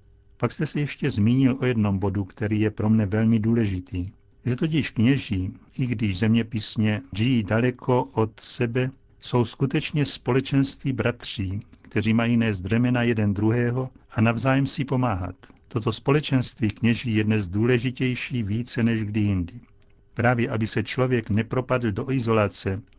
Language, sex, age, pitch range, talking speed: Czech, male, 60-79, 110-130 Hz, 145 wpm